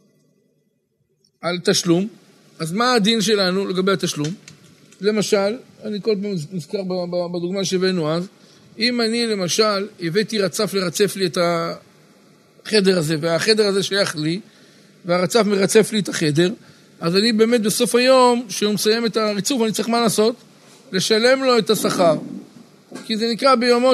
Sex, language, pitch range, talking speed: male, Hebrew, 195-235 Hz, 140 wpm